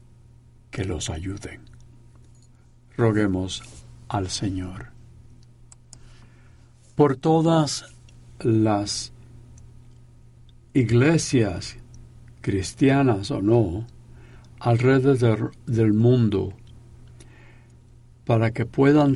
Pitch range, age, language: 110-120 Hz, 60-79, Spanish